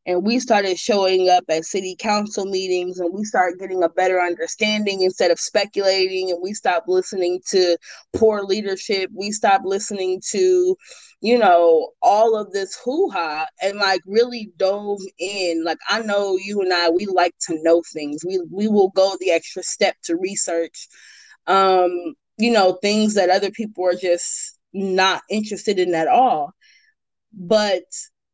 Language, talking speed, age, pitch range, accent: English, 160 wpm, 20-39, 180-230 Hz, American